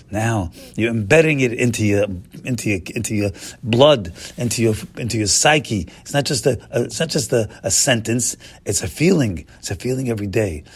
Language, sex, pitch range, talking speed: English, male, 100-145 Hz, 195 wpm